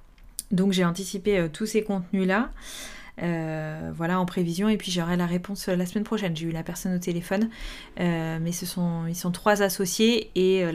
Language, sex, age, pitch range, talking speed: French, female, 20-39, 175-205 Hz, 180 wpm